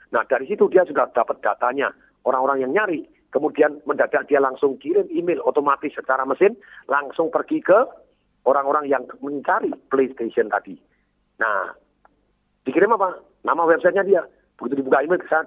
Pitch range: 130-180 Hz